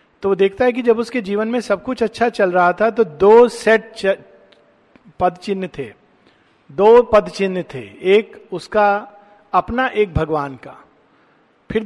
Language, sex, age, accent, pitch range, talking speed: Hindi, male, 50-69, native, 170-220 Hz, 155 wpm